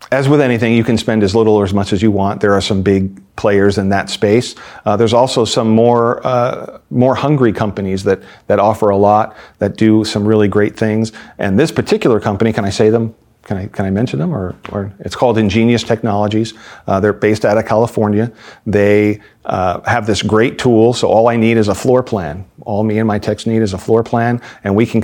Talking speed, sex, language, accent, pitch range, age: 230 wpm, male, English, American, 105-120 Hz, 40-59